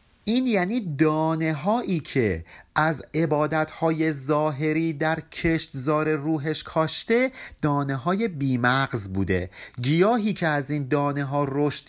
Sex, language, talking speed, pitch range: male, Persian, 110 wpm, 125-175 Hz